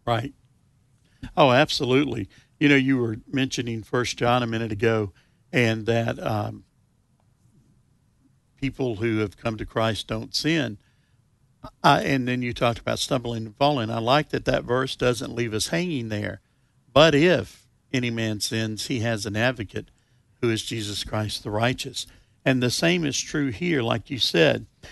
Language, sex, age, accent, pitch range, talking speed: English, male, 60-79, American, 115-140 Hz, 160 wpm